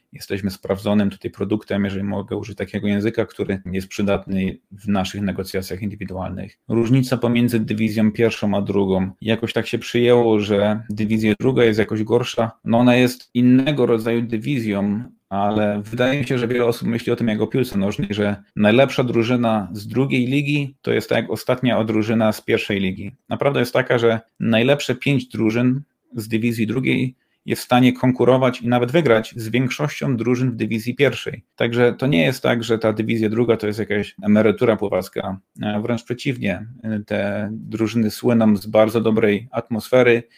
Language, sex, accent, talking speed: Polish, male, native, 170 wpm